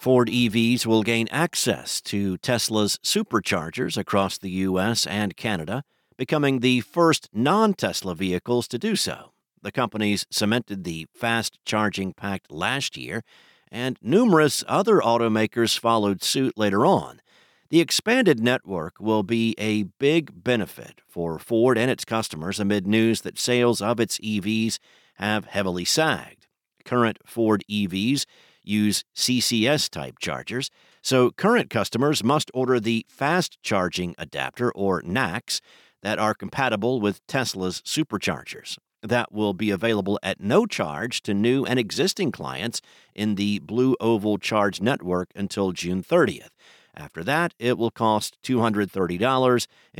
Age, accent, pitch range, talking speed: 50-69, American, 100-125 Hz, 135 wpm